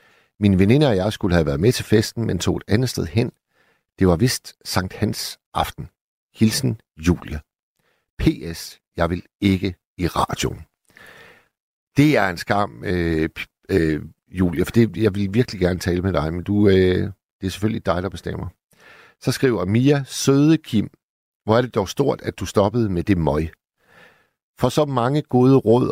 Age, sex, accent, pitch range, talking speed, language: 60-79, male, native, 90-120 Hz, 175 wpm, Danish